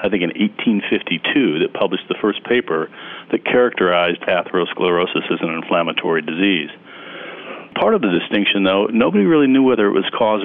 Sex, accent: male, American